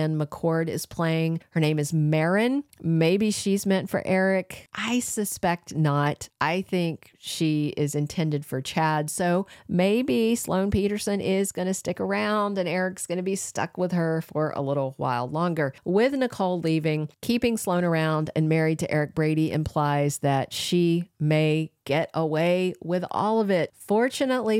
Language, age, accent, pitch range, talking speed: English, 40-59, American, 150-185 Hz, 160 wpm